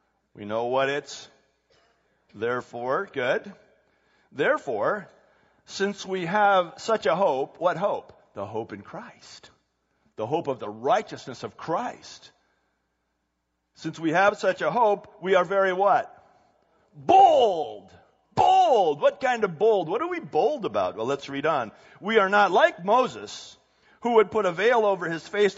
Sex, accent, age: male, American, 50-69